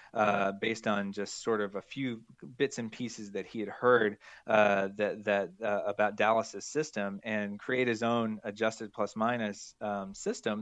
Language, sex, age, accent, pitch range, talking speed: English, male, 20-39, American, 100-115 Hz, 175 wpm